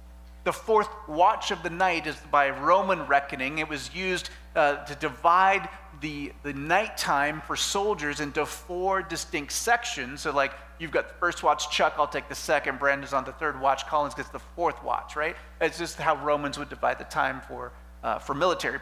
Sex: male